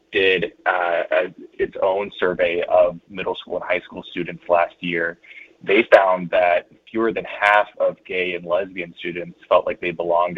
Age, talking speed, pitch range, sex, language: 20-39, 170 wpm, 85-100 Hz, male, English